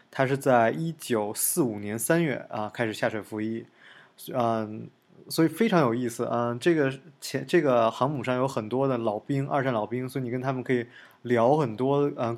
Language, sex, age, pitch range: Chinese, male, 20-39, 115-140 Hz